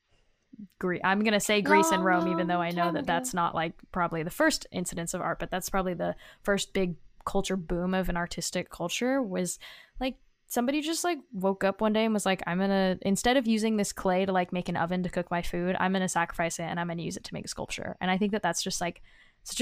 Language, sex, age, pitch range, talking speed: English, female, 10-29, 180-210 Hz, 250 wpm